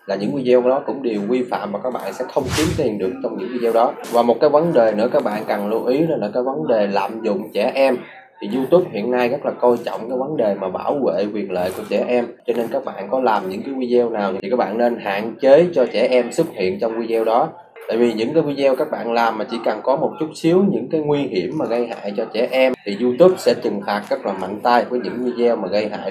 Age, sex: 20-39, male